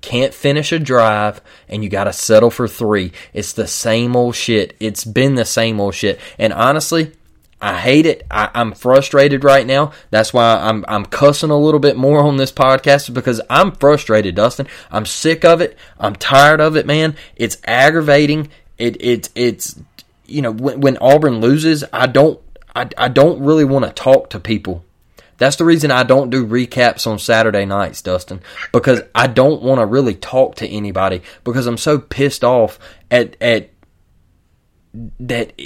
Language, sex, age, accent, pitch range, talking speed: English, male, 20-39, American, 110-140 Hz, 175 wpm